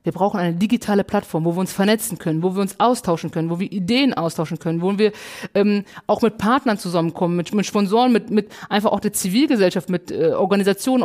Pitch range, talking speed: 175-220 Hz, 210 wpm